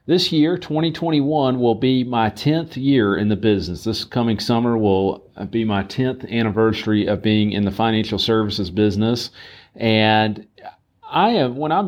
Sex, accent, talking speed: male, American, 155 wpm